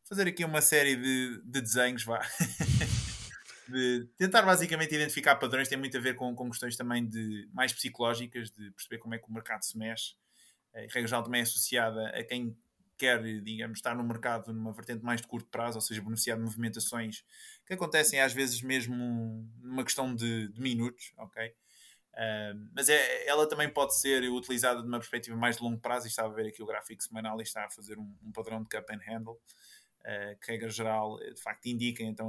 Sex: male